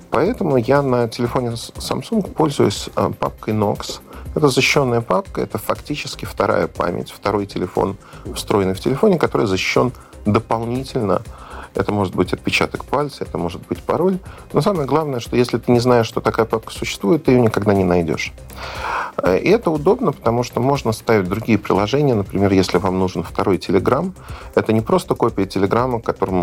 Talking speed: 160 wpm